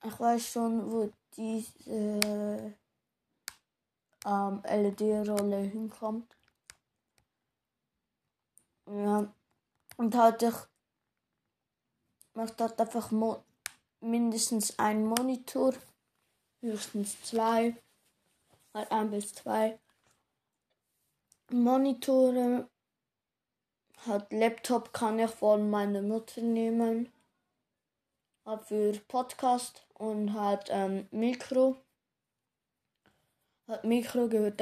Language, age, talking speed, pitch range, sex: German, 20-39, 75 wpm, 210-240 Hz, female